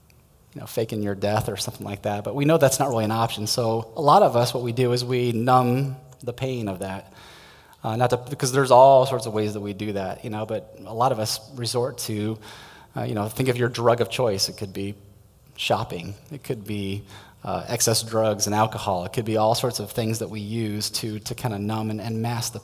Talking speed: 250 wpm